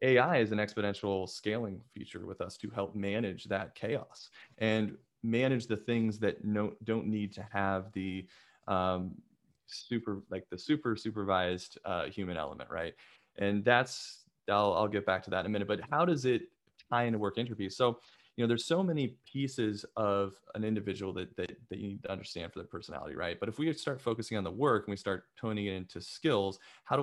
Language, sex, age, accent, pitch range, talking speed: English, male, 20-39, American, 100-115 Hz, 200 wpm